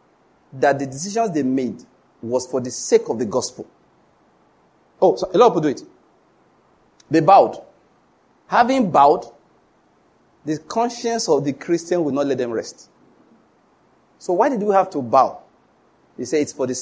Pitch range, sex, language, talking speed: 140-220 Hz, male, English, 165 wpm